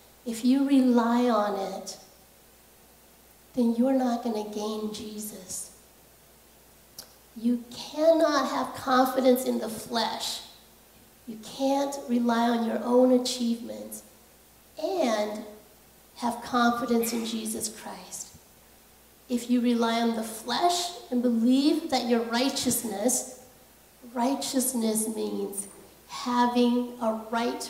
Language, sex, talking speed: English, female, 105 wpm